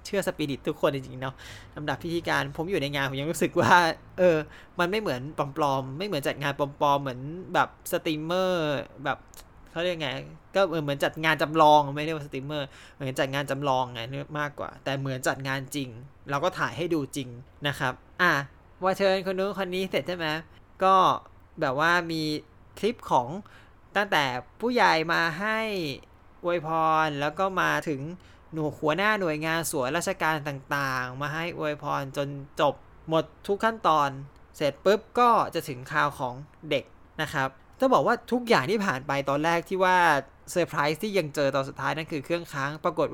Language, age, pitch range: Thai, 20-39, 140-175 Hz